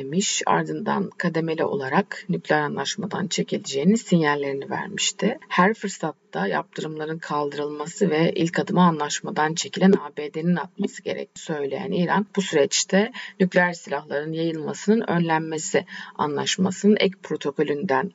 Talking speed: 105 wpm